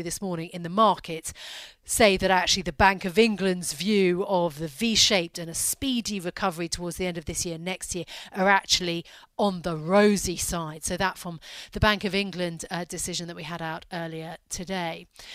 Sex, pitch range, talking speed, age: female, 175-215 Hz, 195 wpm, 40-59